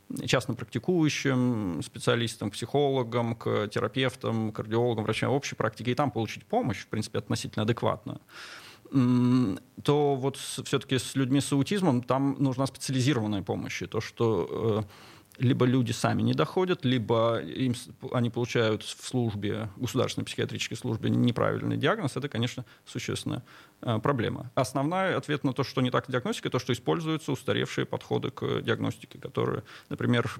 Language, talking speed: Russian, 145 wpm